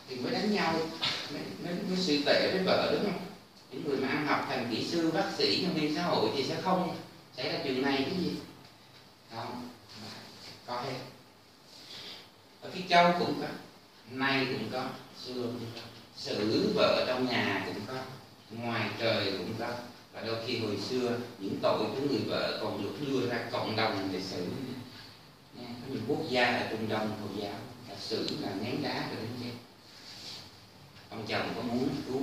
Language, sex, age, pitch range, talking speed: Vietnamese, male, 30-49, 110-135 Hz, 180 wpm